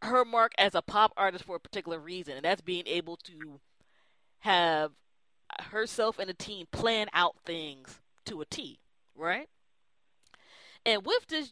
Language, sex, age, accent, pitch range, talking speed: English, female, 20-39, American, 165-235 Hz, 155 wpm